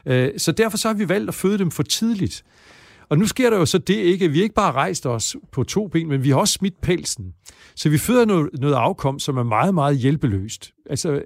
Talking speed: 240 wpm